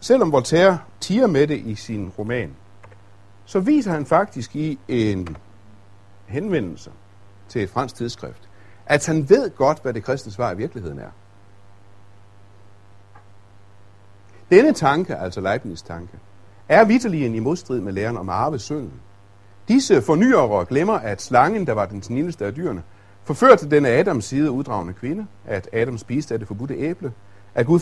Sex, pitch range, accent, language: male, 100-140 Hz, native, Danish